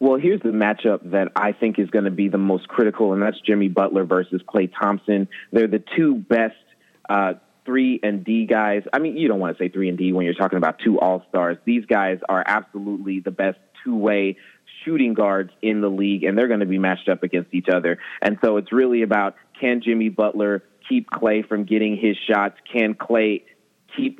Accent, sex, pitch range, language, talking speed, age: American, male, 95-115 Hz, English, 210 wpm, 30-49